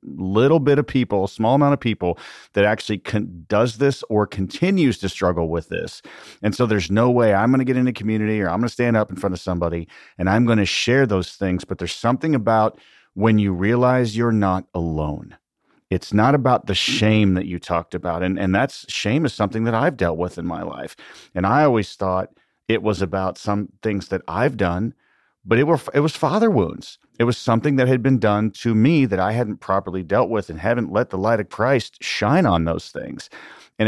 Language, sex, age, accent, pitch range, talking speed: English, male, 40-59, American, 95-120 Hz, 225 wpm